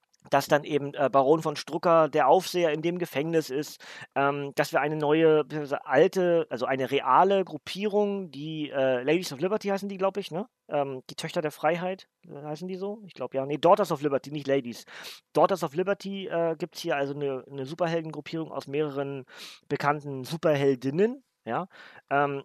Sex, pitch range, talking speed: male, 145-175 Hz, 170 wpm